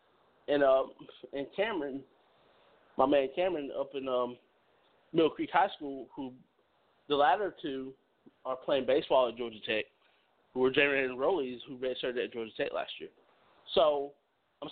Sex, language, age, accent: male, English, 20-39, American